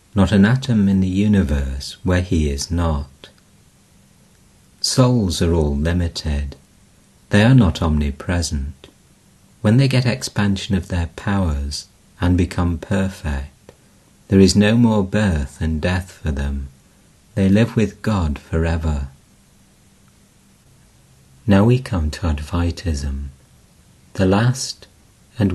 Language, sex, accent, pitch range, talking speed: English, male, British, 80-110 Hz, 115 wpm